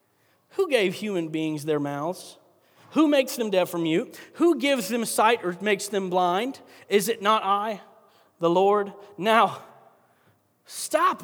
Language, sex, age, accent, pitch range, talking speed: English, male, 40-59, American, 170-215 Hz, 150 wpm